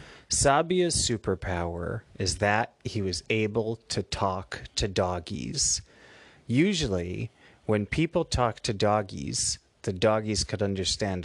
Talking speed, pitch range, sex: 110 wpm, 95-120 Hz, male